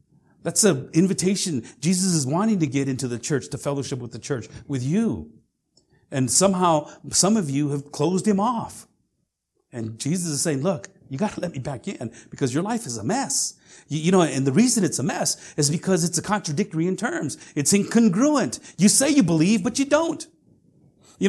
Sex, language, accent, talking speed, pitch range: male, English, American, 195 wpm, 150-210 Hz